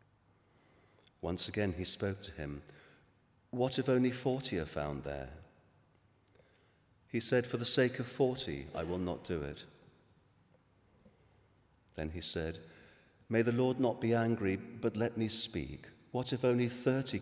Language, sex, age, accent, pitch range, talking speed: English, male, 40-59, British, 80-110 Hz, 145 wpm